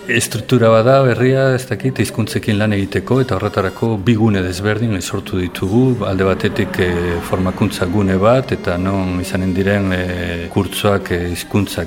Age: 50-69